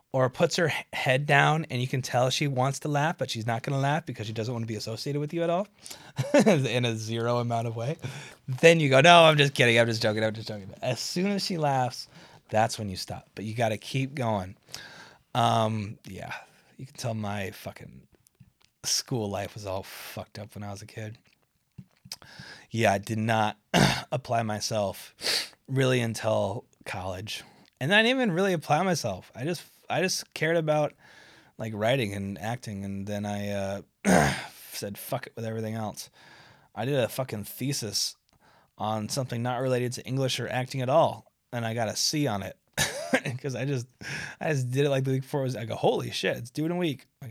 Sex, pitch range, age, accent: male, 110-140 Hz, 20-39, American